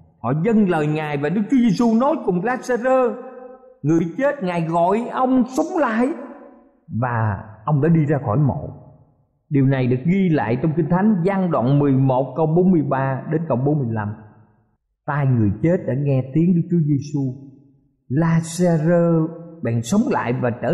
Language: Vietnamese